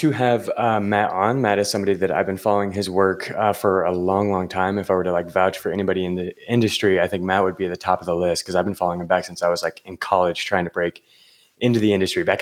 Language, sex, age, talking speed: English, male, 20-39, 295 wpm